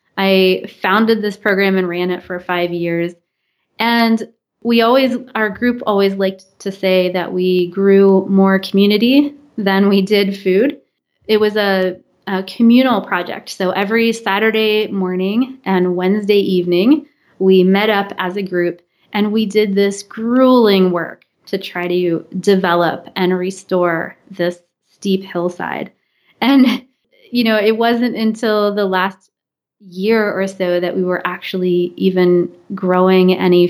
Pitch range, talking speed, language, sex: 185-215 Hz, 140 wpm, English, female